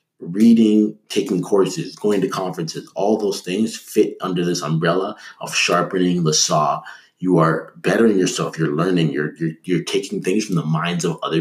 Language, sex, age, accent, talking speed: English, male, 30-49, American, 170 wpm